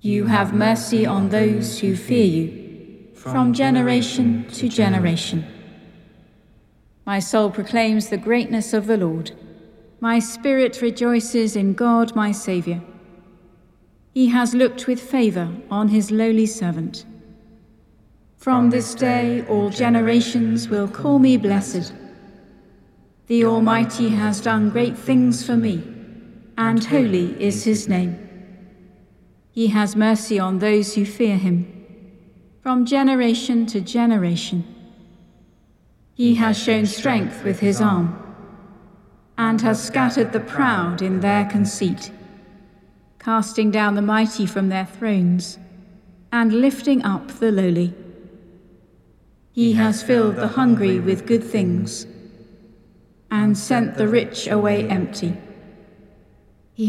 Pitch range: 195-235 Hz